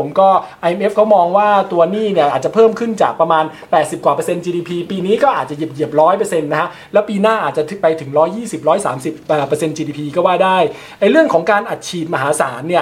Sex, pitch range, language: male, 160-210 Hz, Thai